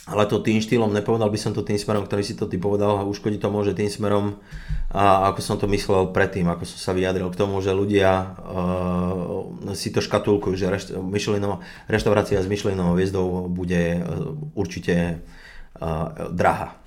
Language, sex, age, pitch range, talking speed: Slovak, male, 30-49, 90-100 Hz, 175 wpm